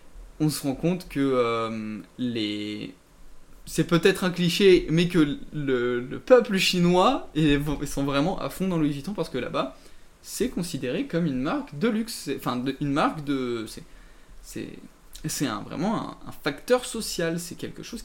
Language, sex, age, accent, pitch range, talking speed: French, male, 20-39, French, 135-180 Hz, 175 wpm